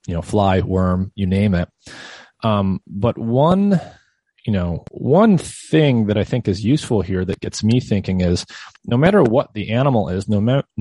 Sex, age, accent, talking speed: male, 30-49, American, 185 wpm